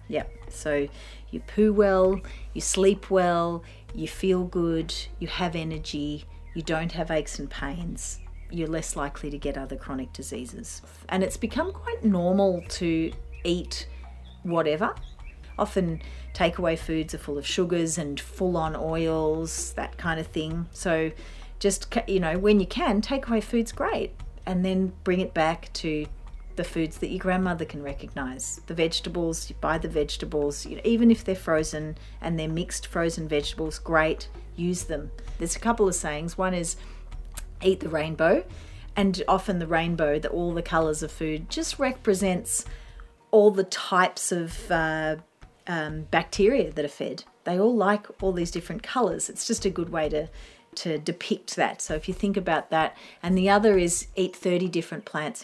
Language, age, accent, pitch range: English, 40-59, Australian, 150-185 Hz